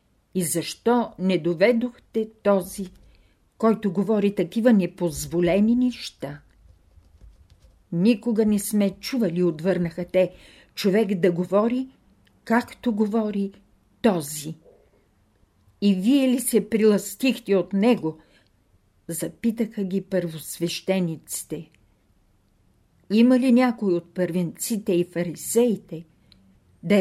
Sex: female